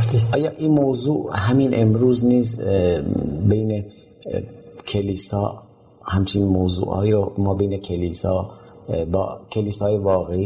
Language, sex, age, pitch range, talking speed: Persian, male, 40-59, 95-105 Hz, 100 wpm